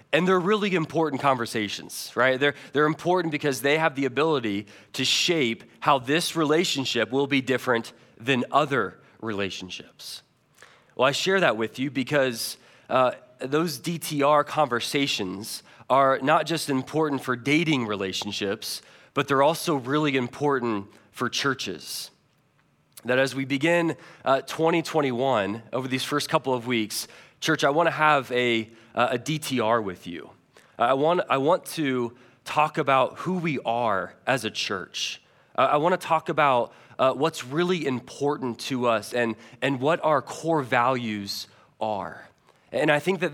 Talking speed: 145 wpm